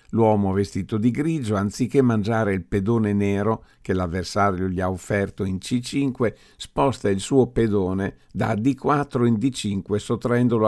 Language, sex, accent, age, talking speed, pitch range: Italian, male, native, 50-69, 140 wpm, 100-125 Hz